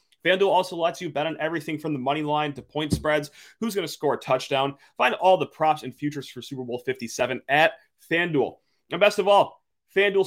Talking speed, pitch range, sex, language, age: 215 wpm, 135-175 Hz, male, English, 30-49